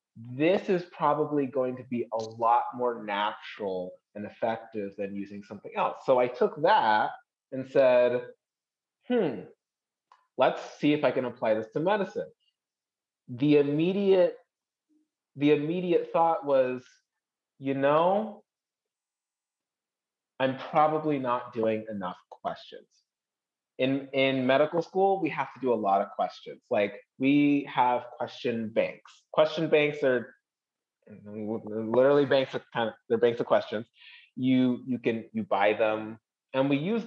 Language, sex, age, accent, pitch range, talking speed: English, male, 30-49, American, 110-150 Hz, 135 wpm